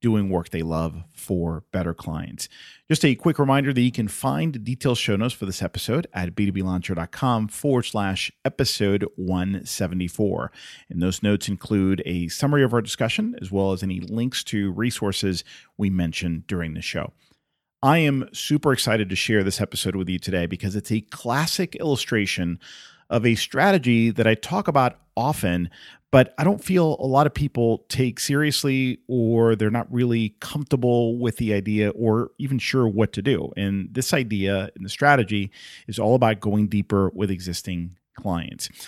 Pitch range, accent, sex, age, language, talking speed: 100-130 Hz, American, male, 40-59, English, 170 wpm